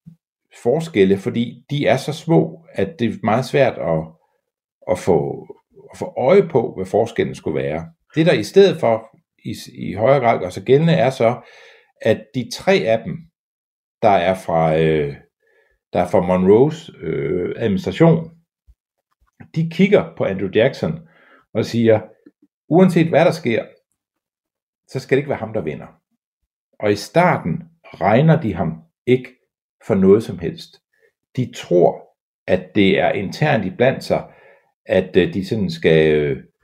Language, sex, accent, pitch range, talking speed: Danish, male, native, 110-175 Hz, 155 wpm